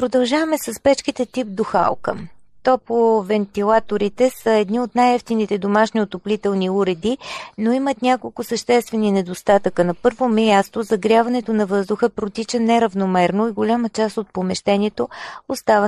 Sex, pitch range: female, 200-230 Hz